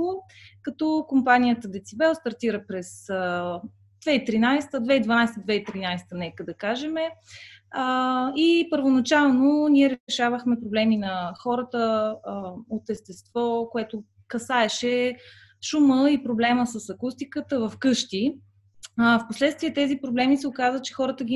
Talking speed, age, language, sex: 100 wpm, 20-39, Bulgarian, female